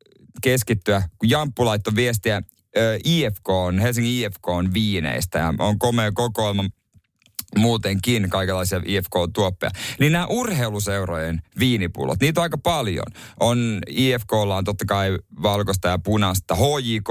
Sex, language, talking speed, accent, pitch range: male, Finnish, 115 wpm, native, 100-145 Hz